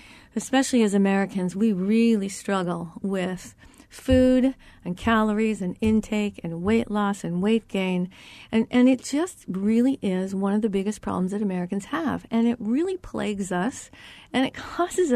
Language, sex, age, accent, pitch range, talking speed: English, female, 40-59, American, 185-240 Hz, 160 wpm